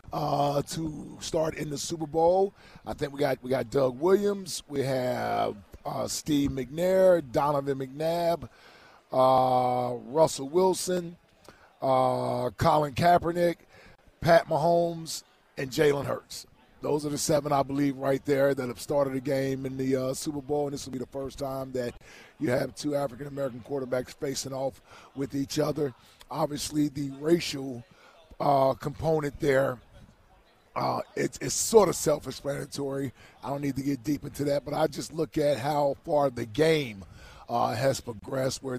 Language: English